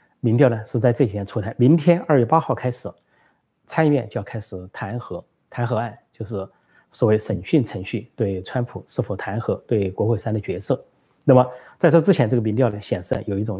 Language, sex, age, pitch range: Chinese, male, 30-49, 105-140 Hz